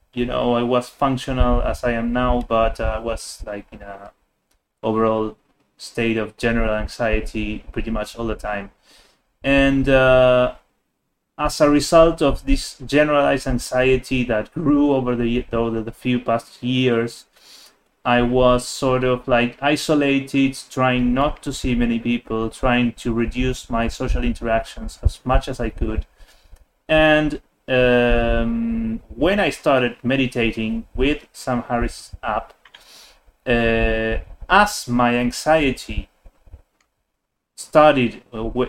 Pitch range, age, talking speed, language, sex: 115-135 Hz, 30-49, 125 wpm, Spanish, male